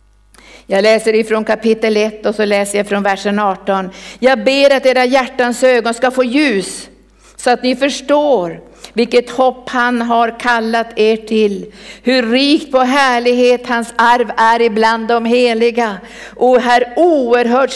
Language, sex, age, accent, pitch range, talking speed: Swedish, female, 50-69, native, 220-250 Hz, 150 wpm